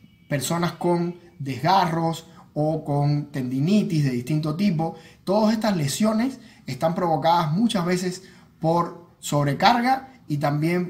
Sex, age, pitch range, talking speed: male, 20-39, 150-195 Hz, 110 wpm